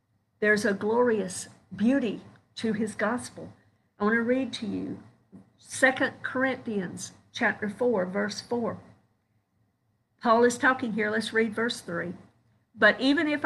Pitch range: 185-240 Hz